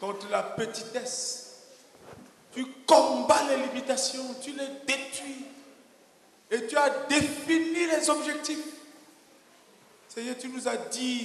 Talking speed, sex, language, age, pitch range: 110 wpm, male, English, 50-69, 270-330 Hz